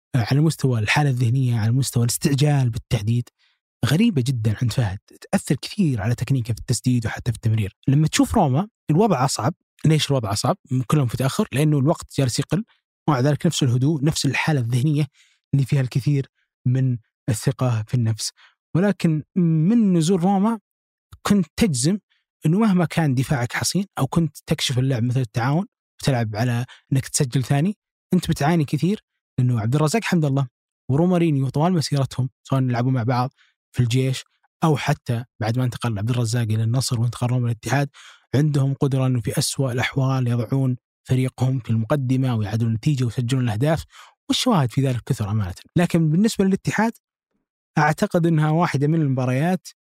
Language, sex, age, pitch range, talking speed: Arabic, male, 20-39, 125-155 Hz, 155 wpm